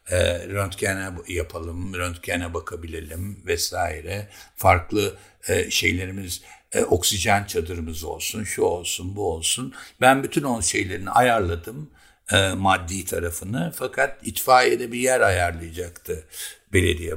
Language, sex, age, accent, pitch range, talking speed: Turkish, male, 60-79, native, 90-120 Hz, 100 wpm